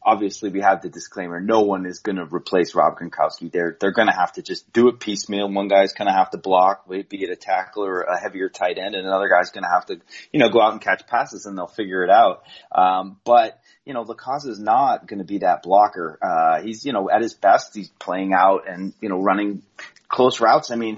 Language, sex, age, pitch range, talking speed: English, male, 30-49, 95-115 Hz, 245 wpm